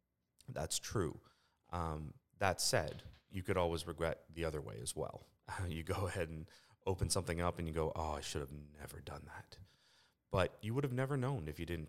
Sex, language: male, English